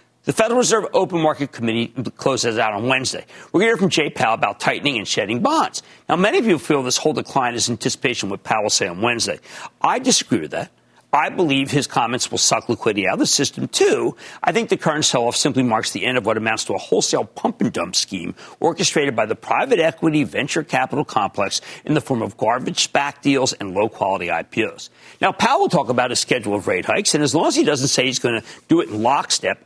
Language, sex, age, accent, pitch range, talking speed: English, male, 50-69, American, 140-235 Hz, 230 wpm